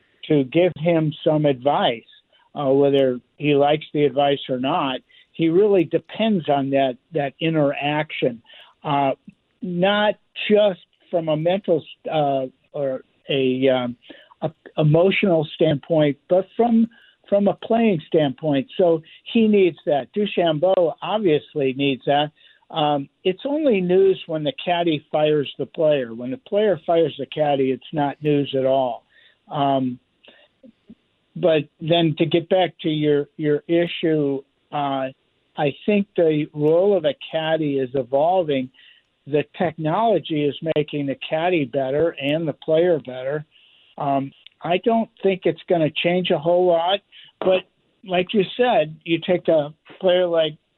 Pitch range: 145-180 Hz